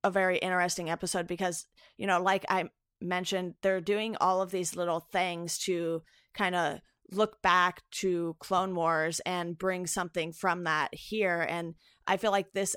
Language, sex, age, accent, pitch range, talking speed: English, female, 30-49, American, 170-195 Hz, 170 wpm